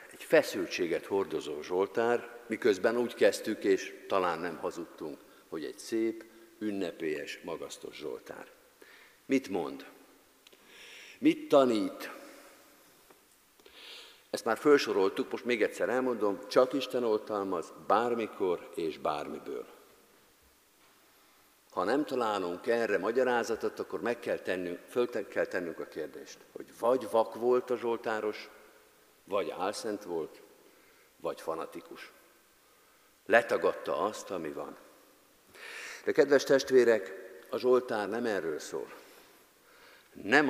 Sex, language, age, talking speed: male, Hungarian, 50-69, 105 wpm